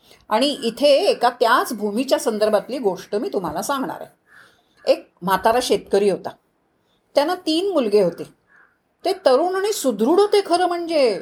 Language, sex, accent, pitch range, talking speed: Marathi, female, native, 210-300 Hz, 140 wpm